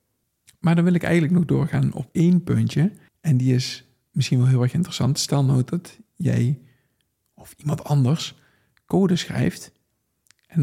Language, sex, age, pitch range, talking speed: Dutch, male, 50-69, 125-165 Hz, 160 wpm